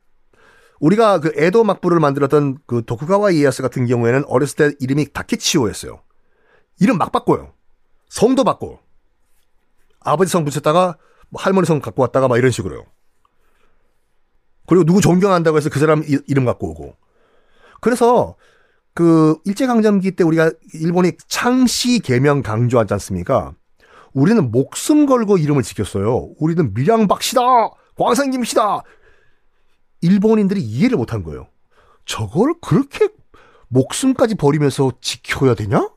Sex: male